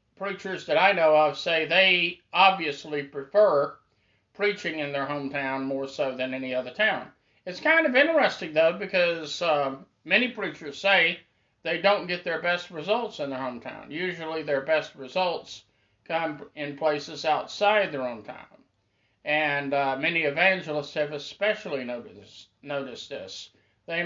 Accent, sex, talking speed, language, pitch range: American, male, 145 wpm, English, 140-185 Hz